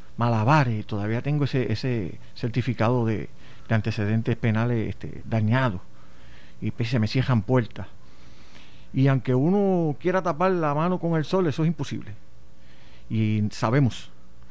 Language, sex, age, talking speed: Spanish, male, 50-69, 135 wpm